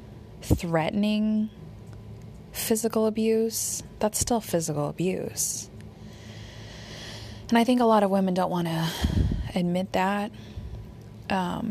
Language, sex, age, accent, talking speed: English, female, 20-39, American, 100 wpm